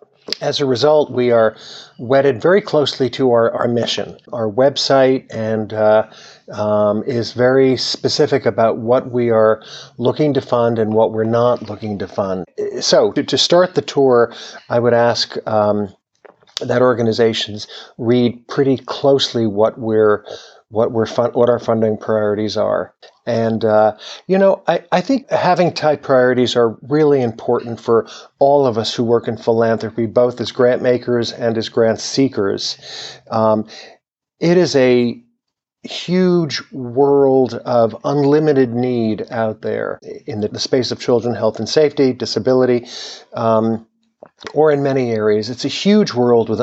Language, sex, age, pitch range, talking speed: English, male, 50-69, 115-135 Hz, 150 wpm